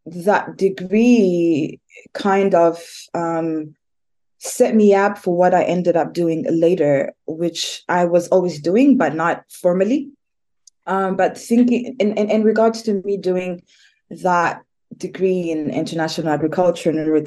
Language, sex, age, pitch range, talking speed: English, female, 20-39, 155-190 Hz, 140 wpm